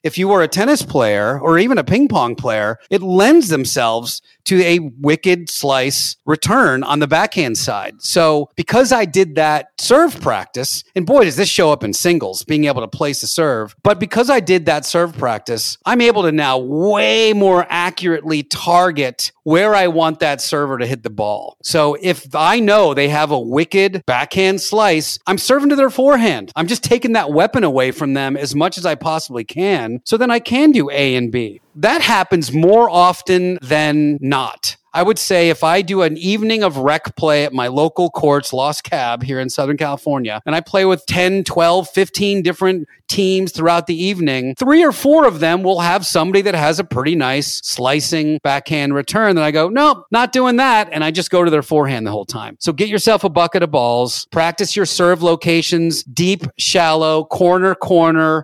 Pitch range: 145-190 Hz